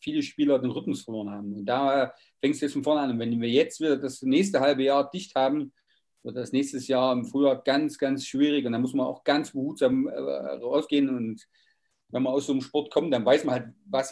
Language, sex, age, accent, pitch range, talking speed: German, male, 40-59, German, 125-145 Hz, 240 wpm